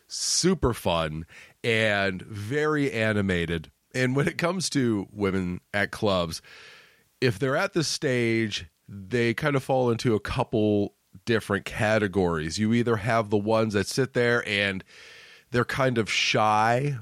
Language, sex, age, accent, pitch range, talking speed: English, male, 30-49, American, 100-130 Hz, 140 wpm